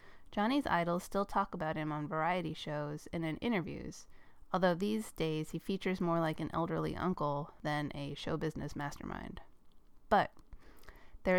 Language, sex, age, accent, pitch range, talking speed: English, female, 30-49, American, 160-210 Hz, 155 wpm